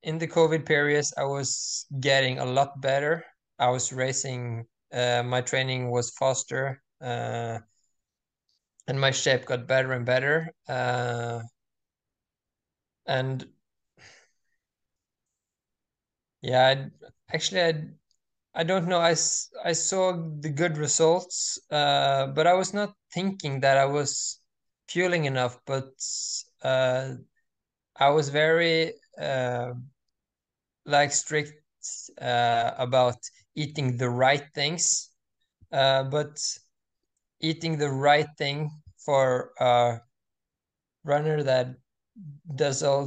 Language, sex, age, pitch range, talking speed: English, male, 20-39, 125-150 Hz, 110 wpm